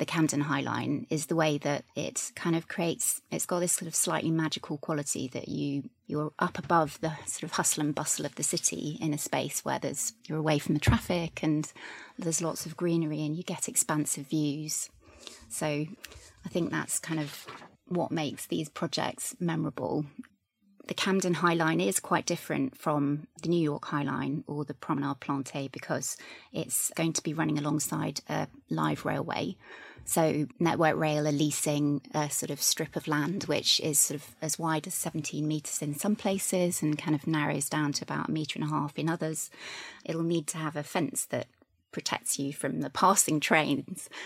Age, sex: 30-49, female